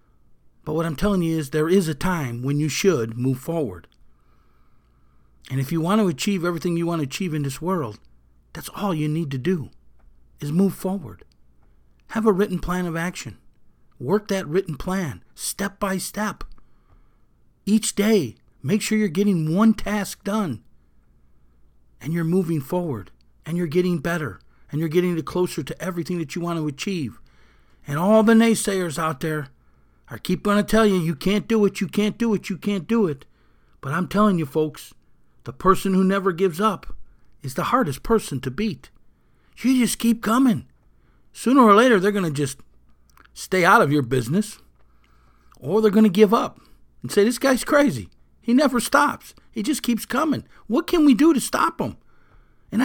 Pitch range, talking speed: 140-210 Hz, 185 wpm